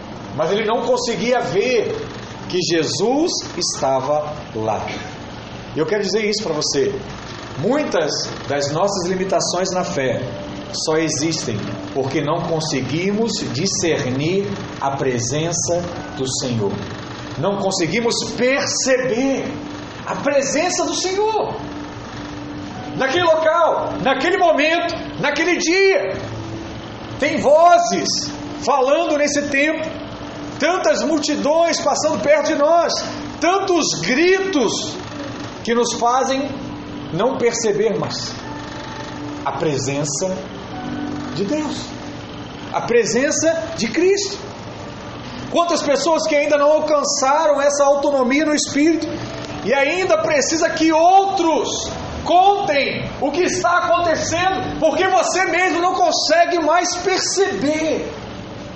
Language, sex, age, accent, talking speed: Portuguese, male, 40-59, Brazilian, 100 wpm